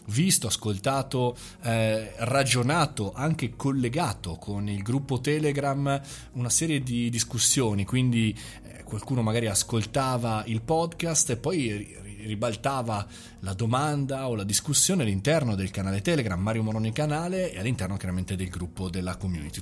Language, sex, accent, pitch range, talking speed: Italian, male, native, 105-140 Hz, 135 wpm